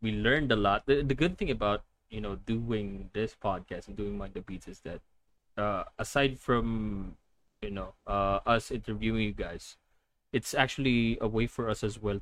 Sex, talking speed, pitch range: male, 185 wpm, 100-130 Hz